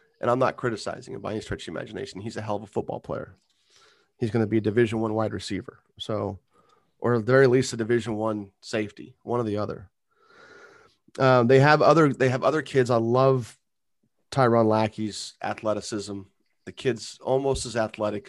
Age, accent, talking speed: 30-49, American, 190 wpm